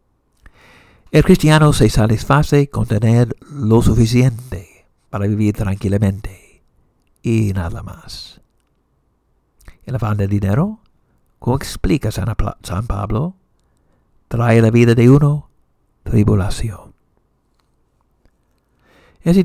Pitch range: 100-120 Hz